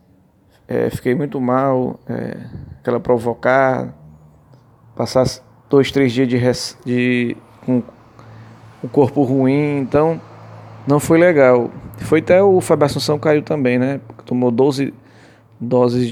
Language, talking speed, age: English, 125 wpm, 20-39